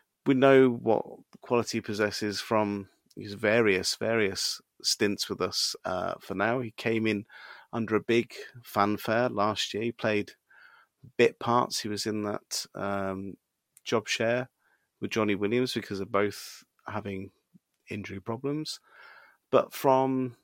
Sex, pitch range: male, 100-120 Hz